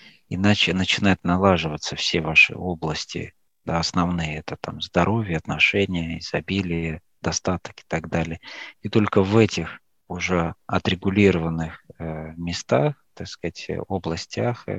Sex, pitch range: male, 80-95 Hz